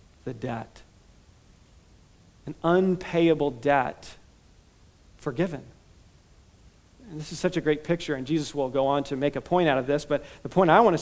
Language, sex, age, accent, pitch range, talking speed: English, male, 40-59, American, 145-175 Hz, 165 wpm